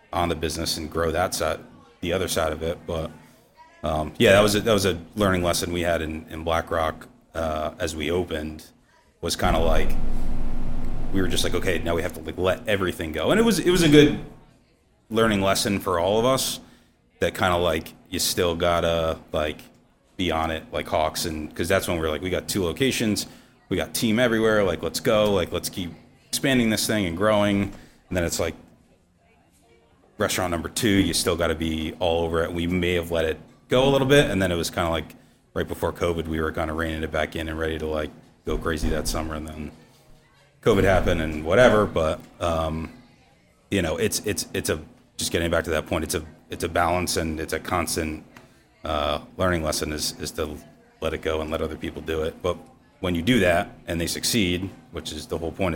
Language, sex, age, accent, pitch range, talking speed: English, male, 30-49, American, 80-95 Hz, 225 wpm